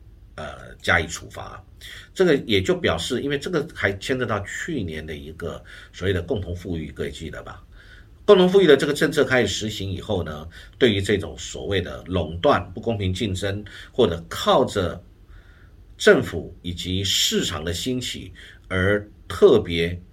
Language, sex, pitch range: Chinese, male, 85-110 Hz